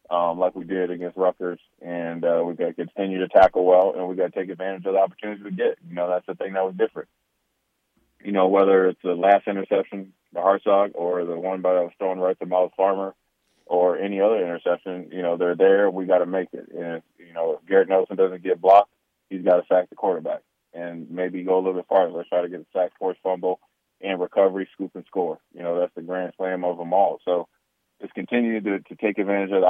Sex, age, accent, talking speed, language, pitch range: male, 20-39, American, 240 wpm, English, 90-95 Hz